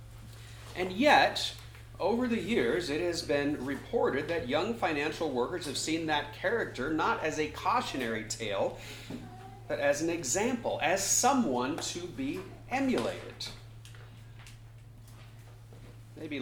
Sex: male